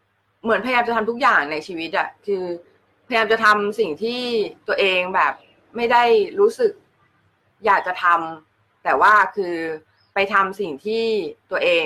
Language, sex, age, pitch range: Thai, female, 20-39, 170-235 Hz